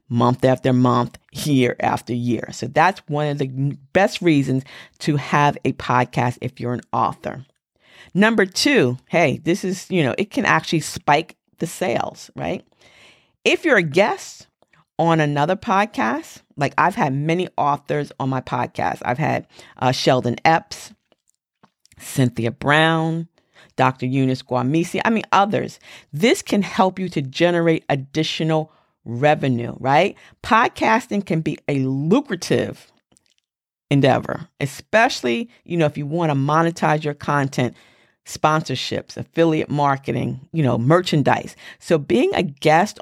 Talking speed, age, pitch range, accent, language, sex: 135 wpm, 40-59, 135-180 Hz, American, English, female